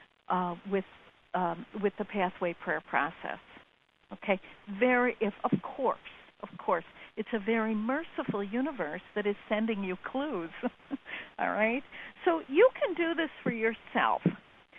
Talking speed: 140 wpm